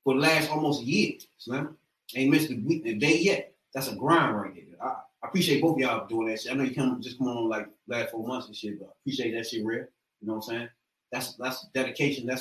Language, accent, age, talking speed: English, American, 30-49, 265 wpm